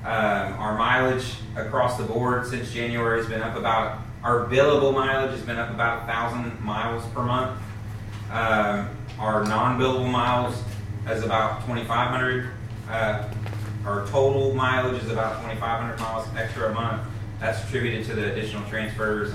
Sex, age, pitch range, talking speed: male, 30-49, 110-120 Hz, 145 wpm